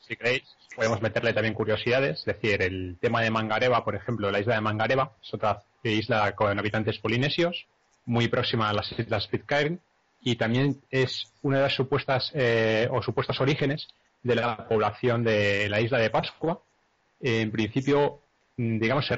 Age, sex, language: 30-49, male, Spanish